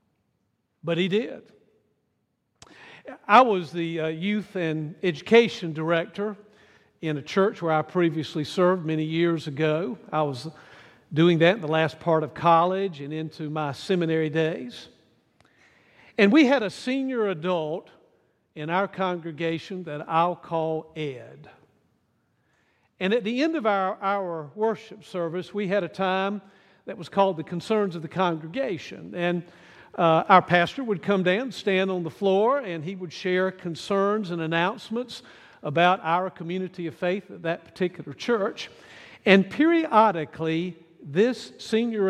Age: 50-69